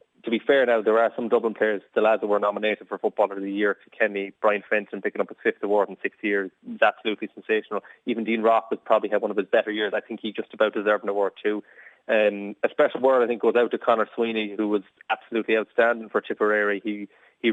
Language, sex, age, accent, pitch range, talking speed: English, male, 20-39, Irish, 105-115 Hz, 245 wpm